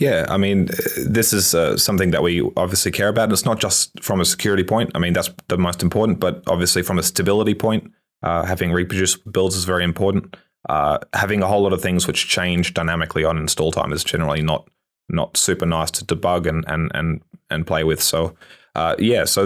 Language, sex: English, male